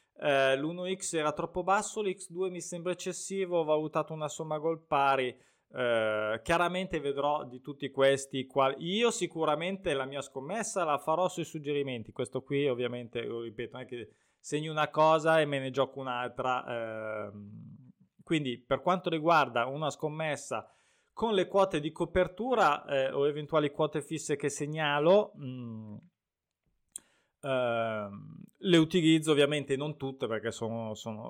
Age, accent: 20-39, native